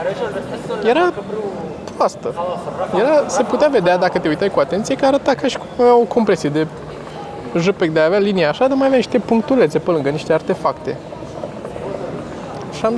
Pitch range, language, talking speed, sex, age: 175-240 Hz, Romanian, 160 wpm, male, 20-39